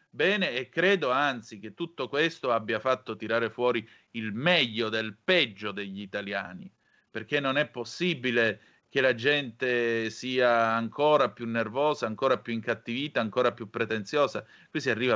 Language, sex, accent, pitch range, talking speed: Italian, male, native, 110-130 Hz, 145 wpm